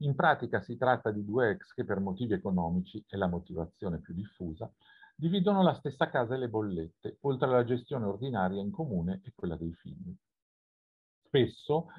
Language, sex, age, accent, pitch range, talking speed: Italian, male, 50-69, native, 100-160 Hz, 170 wpm